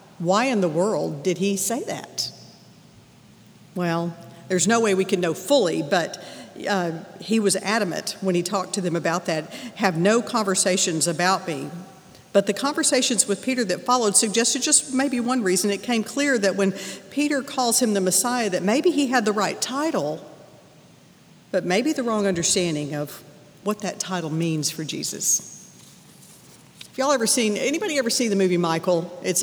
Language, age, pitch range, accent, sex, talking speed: English, 50-69, 180-220 Hz, American, female, 170 wpm